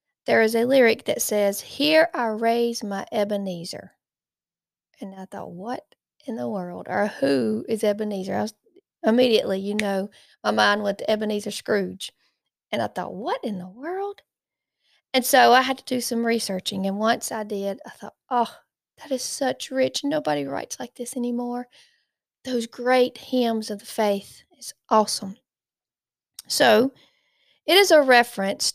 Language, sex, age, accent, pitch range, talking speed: English, female, 40-59, American, 205-245 Hz, 155 wpm